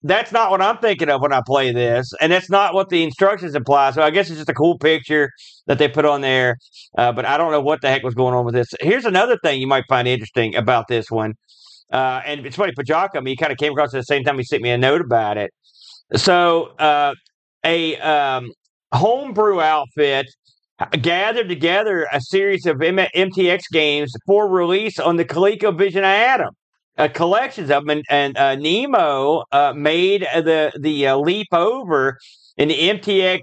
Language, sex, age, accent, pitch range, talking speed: English, male, 50-69, American, 135-180 Hz, 205 wpm